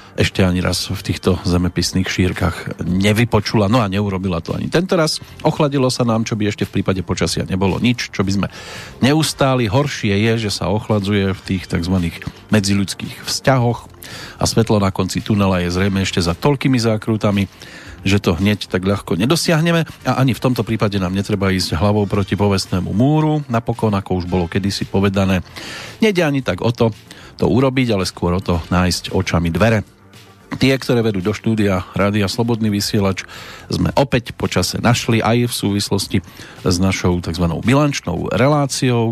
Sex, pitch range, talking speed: male, 95-115 Hz, 165 wpm